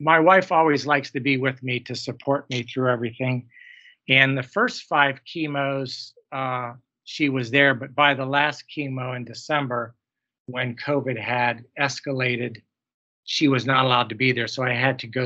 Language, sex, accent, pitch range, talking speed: English, male, American, 125-145 Hz, 175 wpm